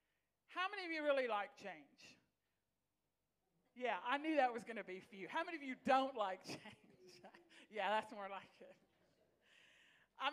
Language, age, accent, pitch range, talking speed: English, 50-69, American, 255-335 Hz, 175 wpm